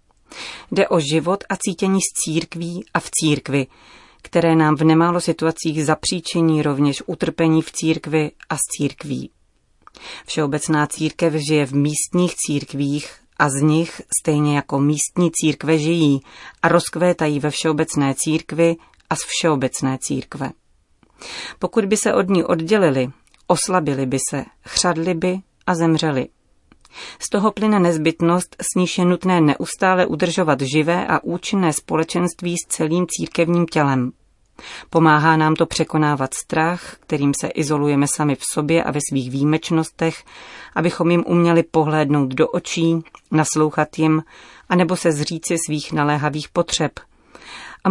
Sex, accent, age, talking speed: female, native, 30-49, 135 wpm